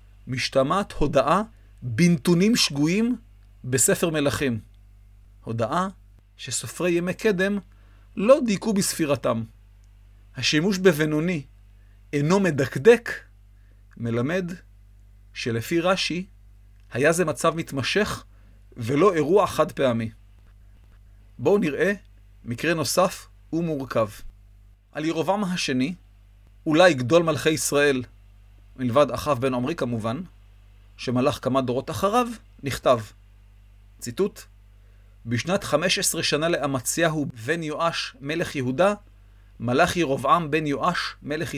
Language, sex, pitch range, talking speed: Hebrew, male, 100-165 Hz, 95 wpm